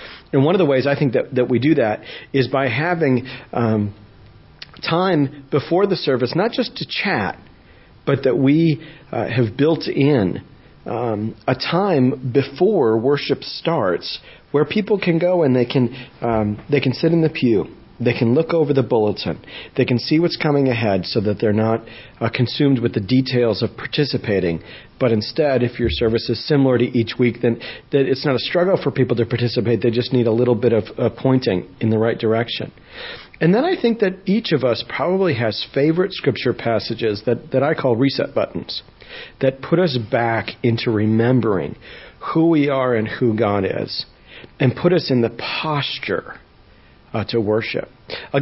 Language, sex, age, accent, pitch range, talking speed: English, male, 40-59, American, 115-140 Hz, 185 wpm